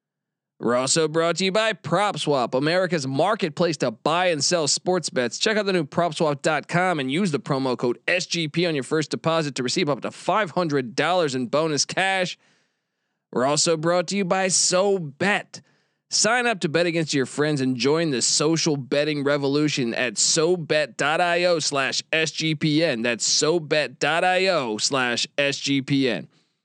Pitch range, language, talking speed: 145-185 Hz, English, 140 wpm